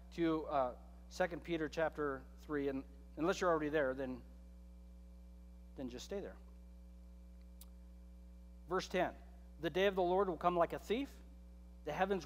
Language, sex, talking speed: English, male, 145 wpm